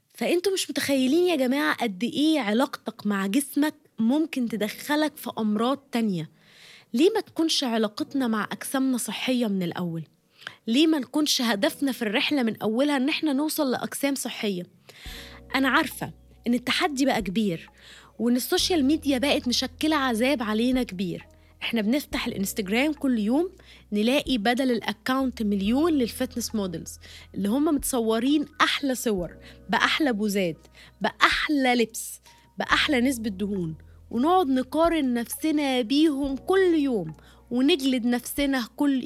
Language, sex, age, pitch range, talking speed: Arabic, female, 20-39, 225-290 Hz, 130 wpm